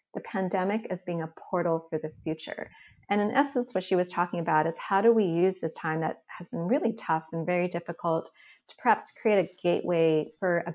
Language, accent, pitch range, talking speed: English, American, 165-205 Hz, 220 wpm